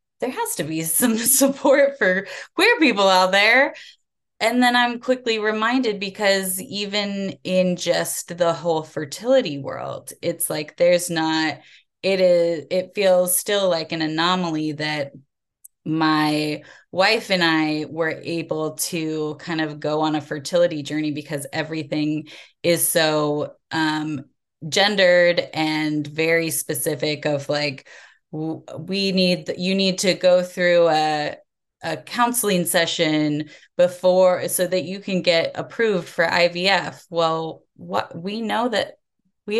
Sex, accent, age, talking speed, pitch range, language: female, American, 20-39, 135 wpm, 155-185 Hz, English